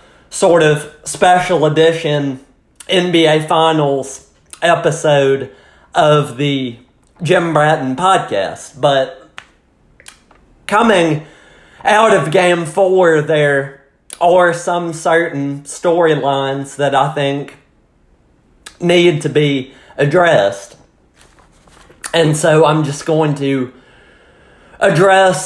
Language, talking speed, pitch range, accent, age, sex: English, 85 wpm, 140-175 Hz, American, 30-49, male